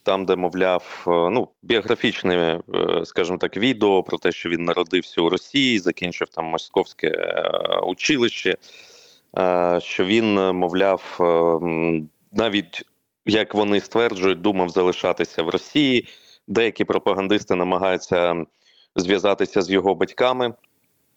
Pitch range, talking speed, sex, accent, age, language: 90-110 Hz, 105 wpm, male, native, 30-49, Ukrainian